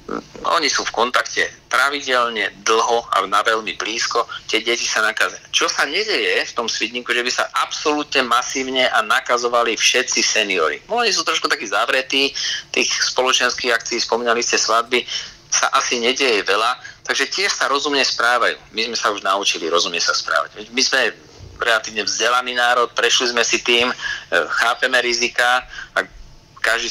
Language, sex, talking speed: Slovak, male, 155 wpm